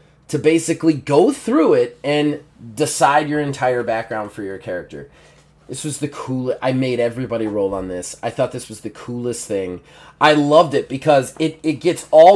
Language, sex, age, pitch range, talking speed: English, male, 20-39, 125-170 Hz, 185 wpm